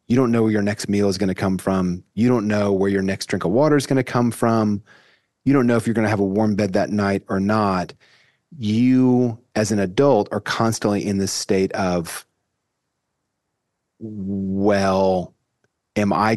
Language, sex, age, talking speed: English, male, 30-49, 200 wpm